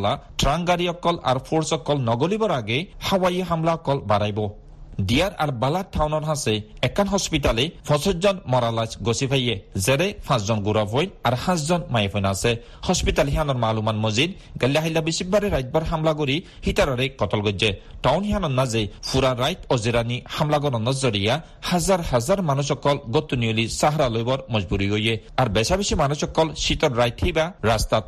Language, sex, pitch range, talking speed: Bengali, male, 115-155 Hz, 75 wpm